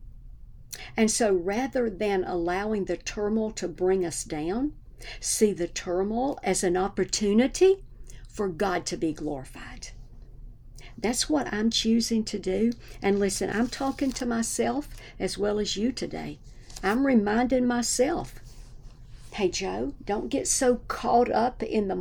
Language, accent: English, American